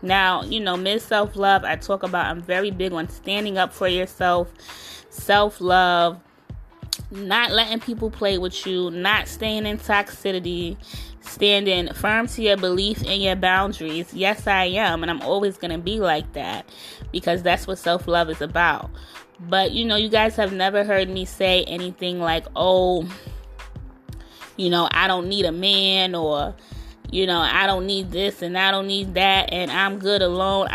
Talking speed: 170 wpm